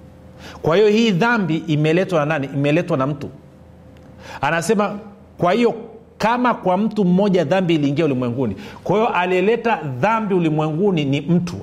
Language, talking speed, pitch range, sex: Swahili, 140 wpm, 145-195 Hz, male